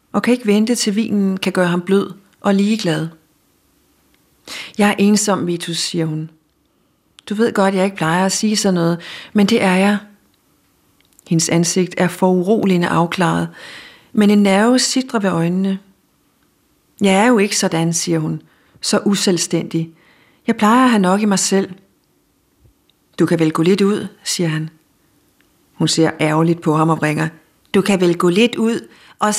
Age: 40-59